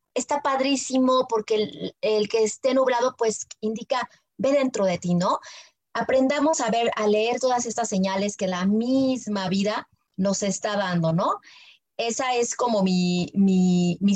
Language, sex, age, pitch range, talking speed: Spanish, female, 30-49, 190-235 Hz, 155 wpm